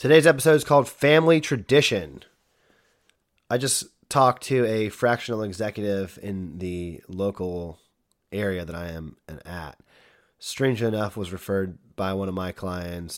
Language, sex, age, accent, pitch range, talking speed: English, male, 30-49, American, 90-115 Hz, 140 wpm